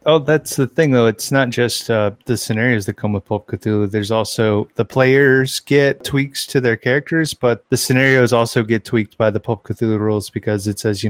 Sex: male